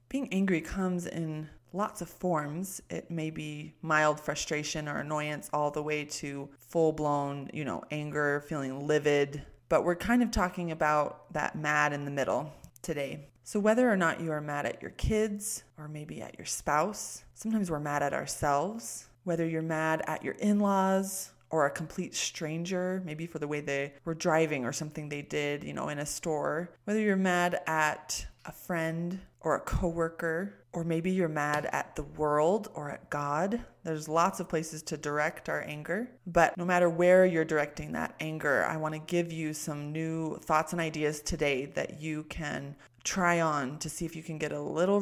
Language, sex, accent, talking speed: English, female, American, 190 wpm